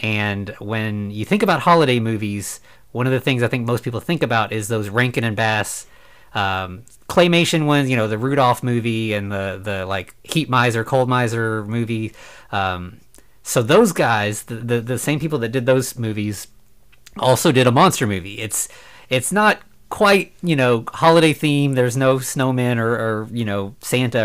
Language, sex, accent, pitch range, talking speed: English, male, American, 105-130 Hz, 180 wpm